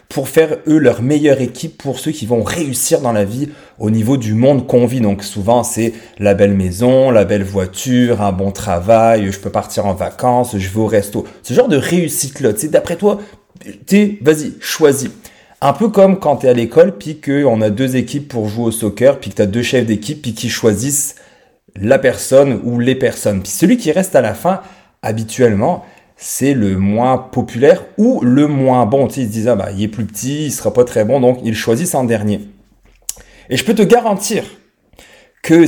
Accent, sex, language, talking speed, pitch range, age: French, male, French, 215 wpm, 110-140 Hz, 30-49